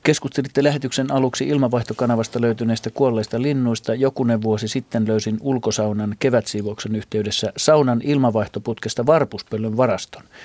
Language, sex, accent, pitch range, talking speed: Finnish, male, native, 110-130 Hz, 105 wpm